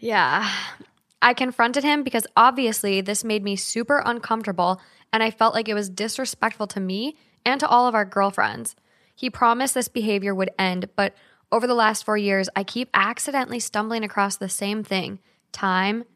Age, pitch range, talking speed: 10-29, 195-230 Hz, 175 wpm